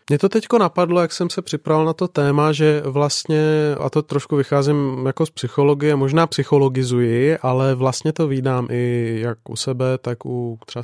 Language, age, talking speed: Czech, 20-39, 185 wpm